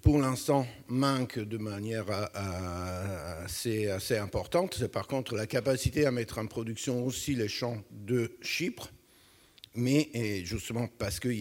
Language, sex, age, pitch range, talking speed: French, male, 60-79, 95-120 Hz, 135 wpm